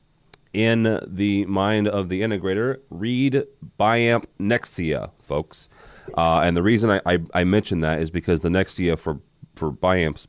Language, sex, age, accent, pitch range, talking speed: English, male, 30-49, American, 80-100 Hz, 150 wpm